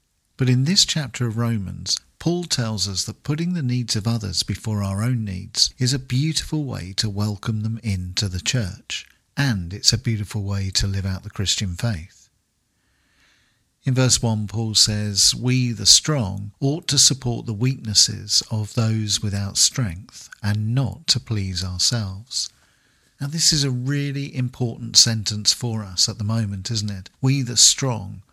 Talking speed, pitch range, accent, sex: 165 wpm, 100-125 Hz, British, male